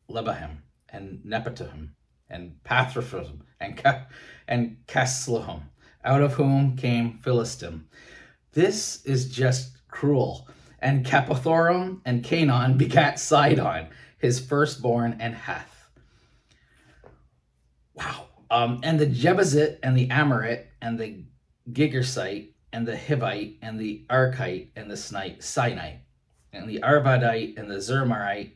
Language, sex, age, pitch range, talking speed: English, male, 30-49, 100-130 Hz, 115 wpm